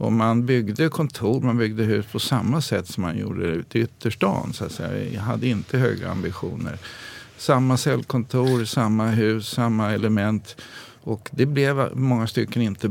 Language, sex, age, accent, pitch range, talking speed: Swedish, male, 50-69, native, 110-130 Hz, 165 wpm